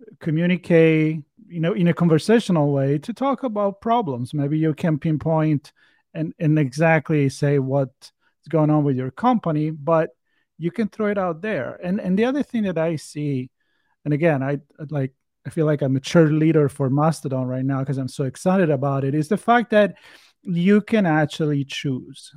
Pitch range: 145-190 Hz